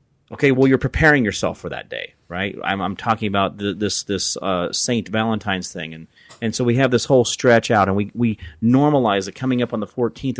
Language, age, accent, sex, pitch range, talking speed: English, 30-49, American, male, 95-120 Hz, 225 wpm